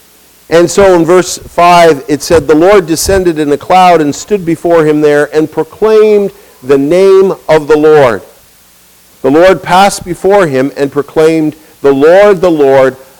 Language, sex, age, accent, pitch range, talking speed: English, male, 50-69, American, 145-185 Hz, 165 wpm